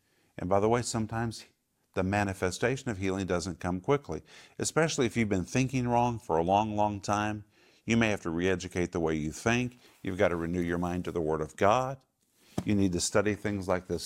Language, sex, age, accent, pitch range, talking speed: English, male, 50-69, American, 90-110 Hz, 215 wpm